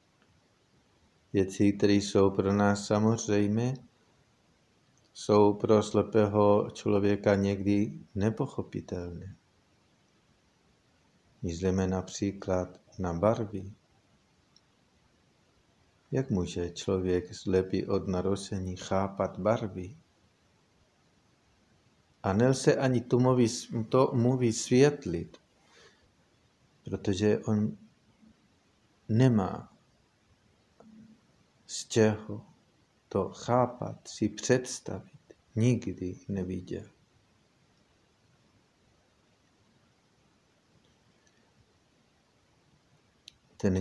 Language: Czech